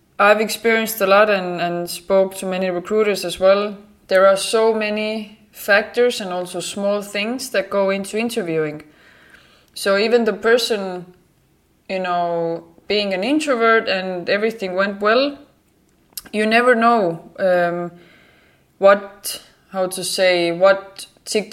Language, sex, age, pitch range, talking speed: English, female, 20-39, 175-205 Hz, 135 wpm